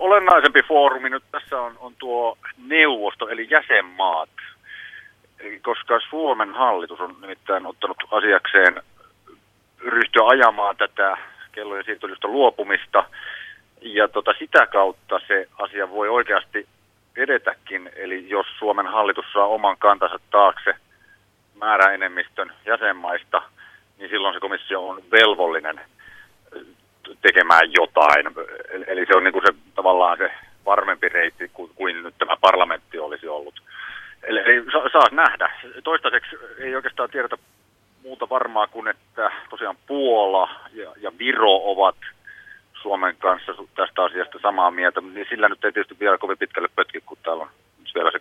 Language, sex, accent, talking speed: Finnish, male, native, 130 wpm